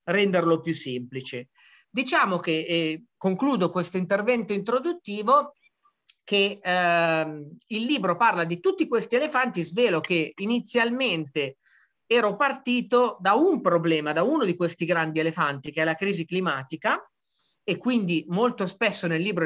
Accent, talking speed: native, 135 wpm